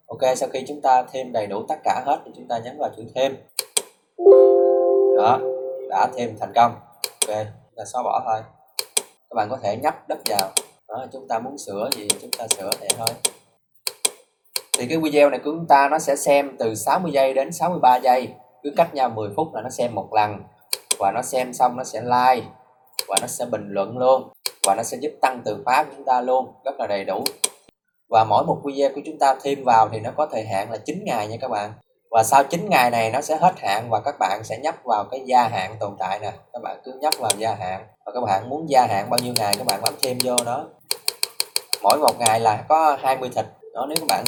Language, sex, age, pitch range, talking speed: Vietnamese, male, 20-39, 110-140 Hz, 235 wpm